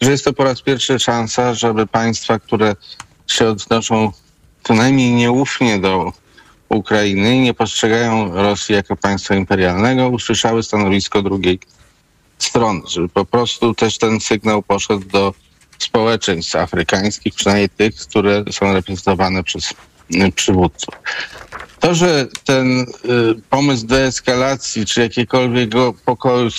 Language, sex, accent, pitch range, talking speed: Polish, male, native, 105-125 Hz, 115 wpm